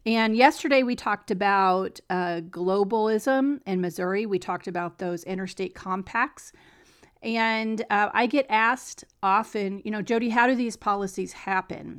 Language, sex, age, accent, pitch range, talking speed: English, female, 40-59, American, 185-220 Hz, 145 wpm